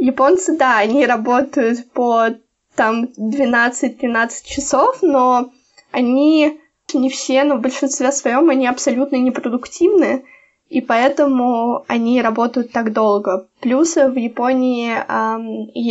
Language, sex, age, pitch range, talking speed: Russian, female, 20-39, 225-270 Hz, 110 wpm